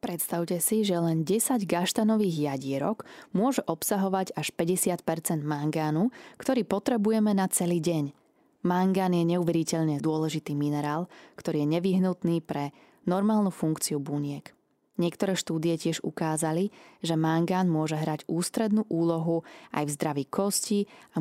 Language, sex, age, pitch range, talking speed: Slovak, female, 20-39, 155-195 Hz, 125 wpm